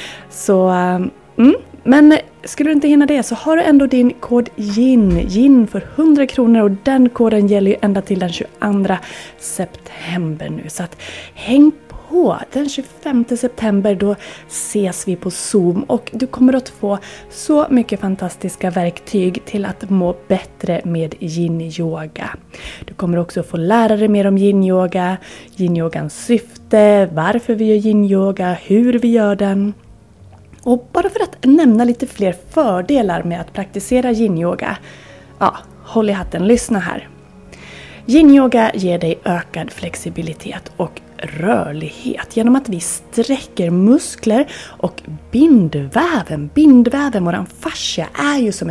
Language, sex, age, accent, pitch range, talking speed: Swedish, female, 20-39, native, 180-245 Hz, 145 wpm